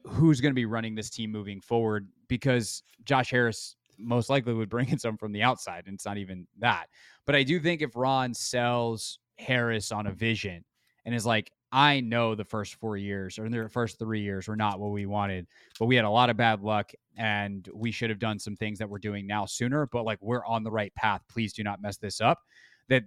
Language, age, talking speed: English, 20-39, 235 wpm